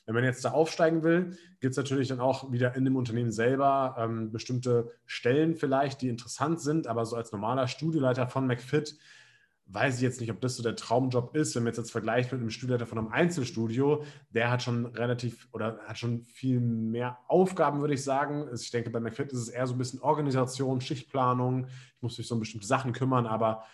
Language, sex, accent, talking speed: German, male, German, 215 wpm